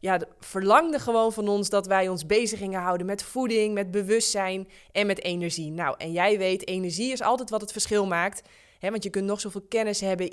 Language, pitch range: Dutch, 175-210 Hz